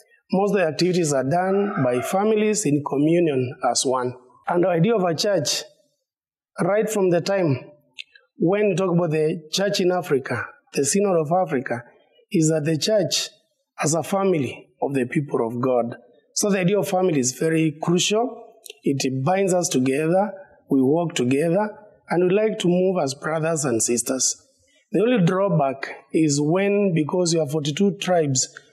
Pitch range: 135-185 Hz